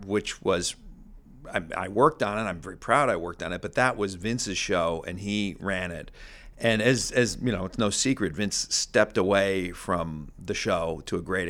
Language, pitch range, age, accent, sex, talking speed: English, 100-135 Hz, 40-59, American, male, 210 wpm